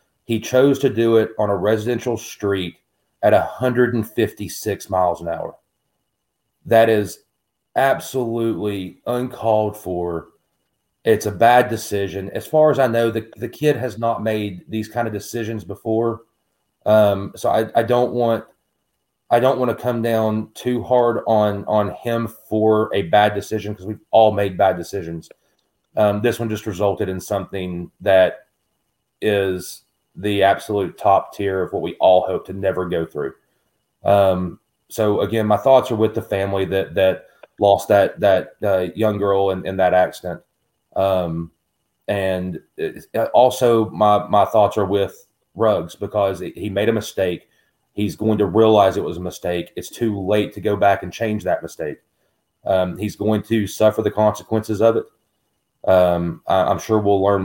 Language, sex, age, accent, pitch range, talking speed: English, male, 30-49, American, 95-115 Hz, 165 wpm